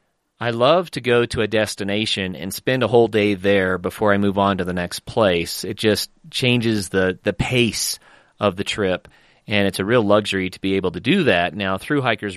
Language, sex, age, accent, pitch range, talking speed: English, male, 30-49, American, 95-120 Hz, 210 wpm